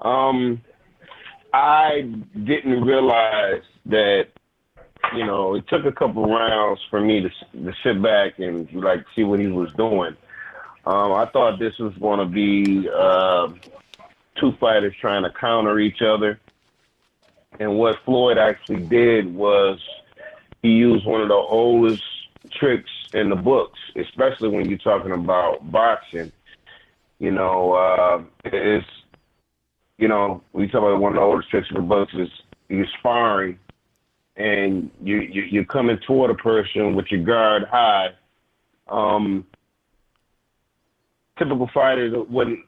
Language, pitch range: English, 95-115 Hz